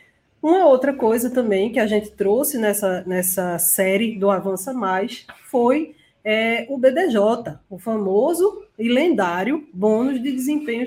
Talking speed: 130 wpm